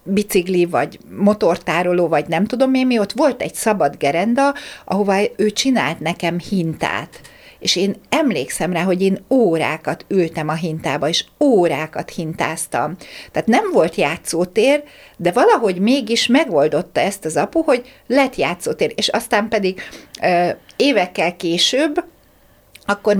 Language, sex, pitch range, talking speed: Hungarian, female, 180-270 Hz, 130 wpm